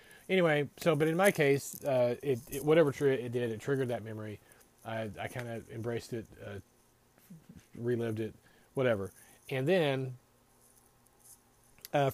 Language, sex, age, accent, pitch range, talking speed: English, male, 40-59, American, 110-140 Hz, 150 wpm